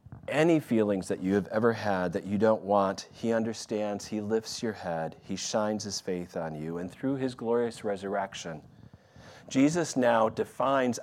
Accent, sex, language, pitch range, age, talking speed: American, male, English, 110-150 Hz, 40-59, 170 wpm